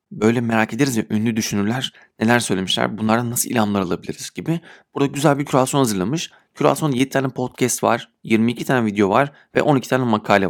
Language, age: Turkish, 40-59